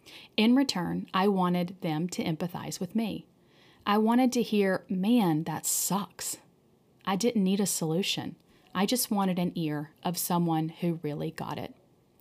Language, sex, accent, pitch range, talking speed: English, female, American, 170-225 Hz, 155 wpm